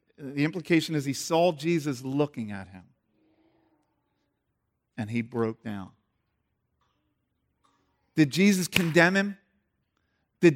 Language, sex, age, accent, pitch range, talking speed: English, male, 40-59, American, 140-180 Hz, 100 wpm